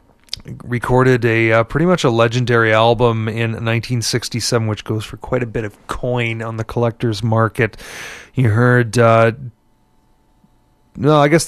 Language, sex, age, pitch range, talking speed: English, male, 30-49, 110-125 Hz, 160 wpm